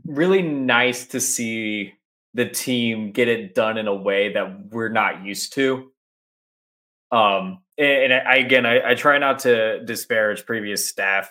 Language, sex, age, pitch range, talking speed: English, male, 20-39, 105-130 Hz, 155 wpm